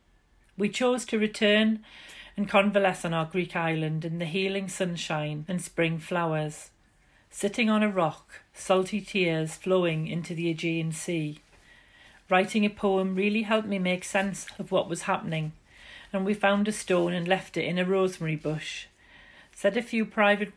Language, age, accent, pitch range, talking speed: English, 40-59, British, 165-200 Hz, 165 wpm